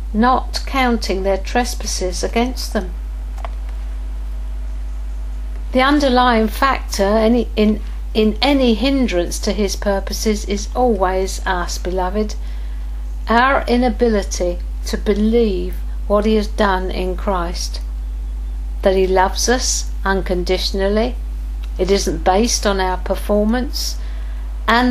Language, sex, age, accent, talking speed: English, female, 60-79, British, 100 wpm